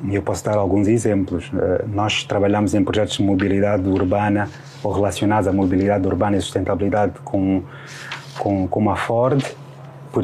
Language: Portuguese